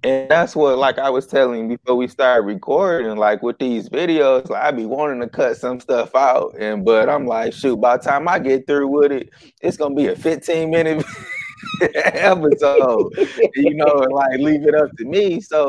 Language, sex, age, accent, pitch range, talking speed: English, male, 20-39, American, 105-140 Hz, 205 wpm